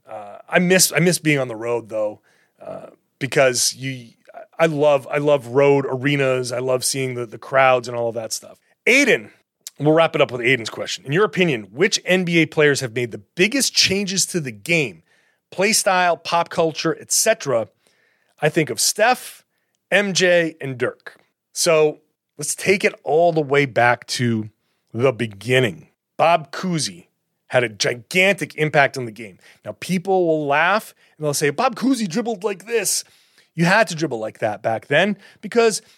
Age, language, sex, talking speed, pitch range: 30-49, English, male, 175 wpm, 140-205 Hz